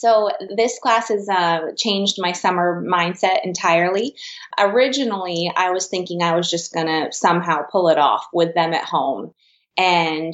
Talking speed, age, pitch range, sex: 155 wpm, 20-39, 165-210 Hz, female